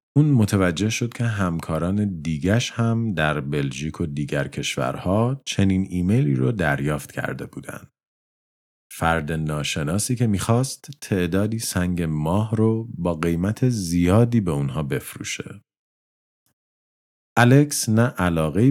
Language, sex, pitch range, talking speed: Persian, male, 75-110 Hz, 110 wpm